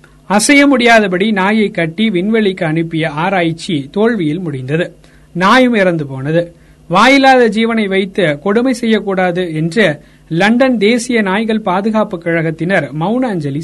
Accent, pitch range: native, 170-225 Hz